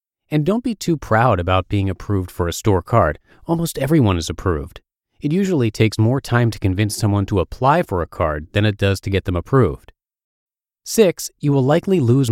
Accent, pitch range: American, 95-130 Hz